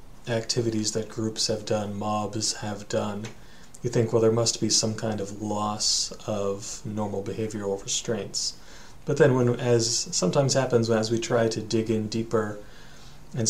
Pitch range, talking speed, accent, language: 110-120 Hz, 160 wpm, American, English